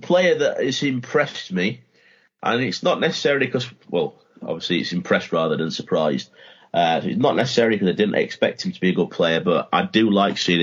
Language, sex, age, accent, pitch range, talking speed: English, male, 30-49, British, 85-115 Hz, 210 wpm